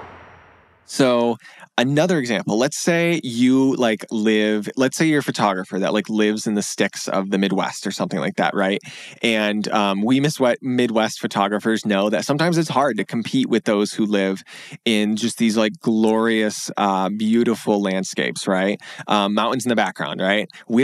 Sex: male